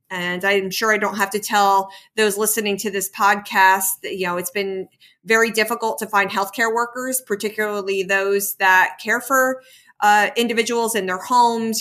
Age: 30-49